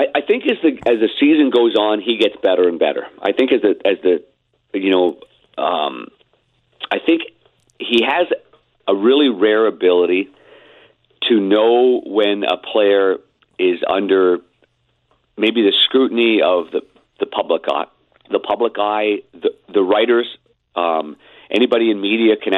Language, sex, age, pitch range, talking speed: English, male, 50-69, 95-130 Hz, 150 wpm